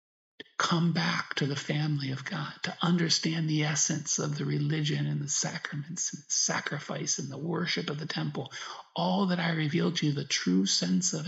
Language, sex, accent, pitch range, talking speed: English, male, American, 145-175 Hz, 185 wpm